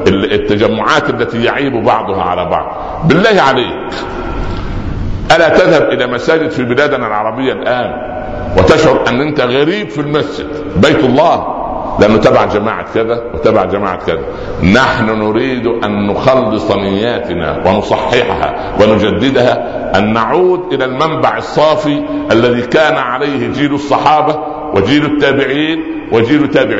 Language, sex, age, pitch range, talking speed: Arabic, male, 60-79, 95-135 Hz, 115 wpm